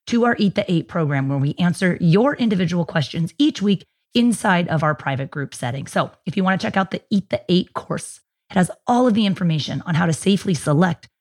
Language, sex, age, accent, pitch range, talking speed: English, female, 30-49, American, 165-205 Hz, 230 wpm